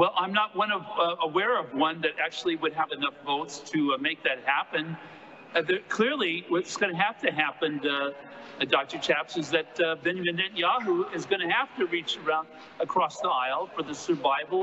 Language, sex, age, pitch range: English, male, 50-69, 155-195 Hz